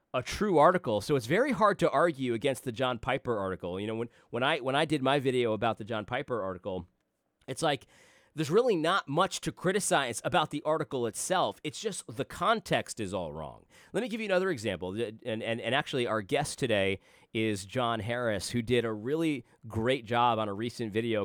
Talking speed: 210 wpm